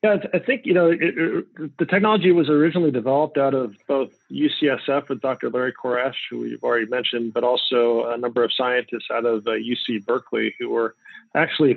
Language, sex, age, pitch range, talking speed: English, male, 40-59, 115-145 Hz, 185 wpm